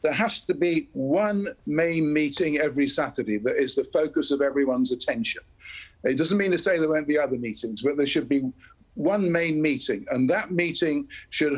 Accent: British